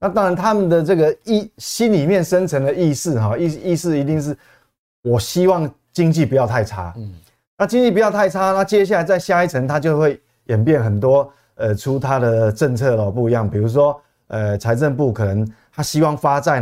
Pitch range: 120-180 Hz